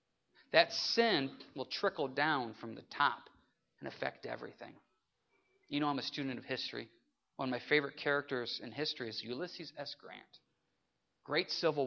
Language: English